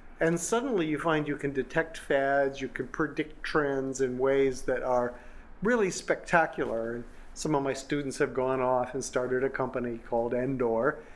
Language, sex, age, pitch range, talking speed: English, male, 50-69, 130-185 Hz, 170 wpm